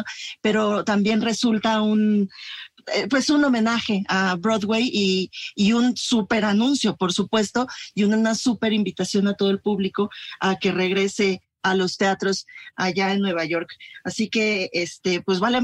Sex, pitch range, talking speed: female, 185-220 Hz, 155 wpm